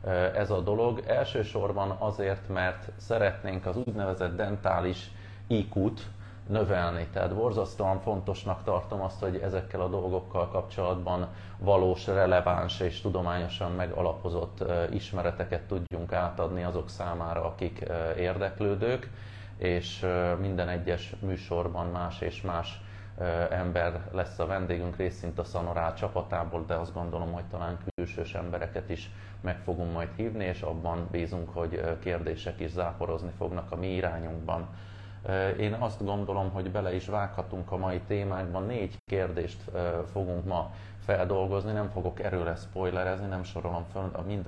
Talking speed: 125 wpm